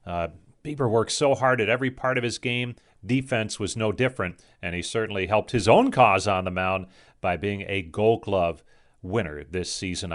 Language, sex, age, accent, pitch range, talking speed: English, male, 40-59, American, 105-140 Hz, 195 wpm